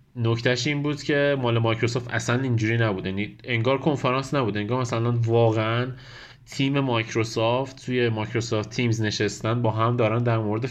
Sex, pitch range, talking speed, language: male, 110-135 Hz, 145 wpm, Persian